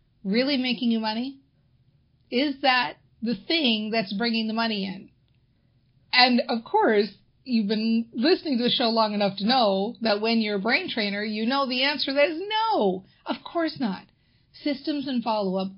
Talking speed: 170 wpm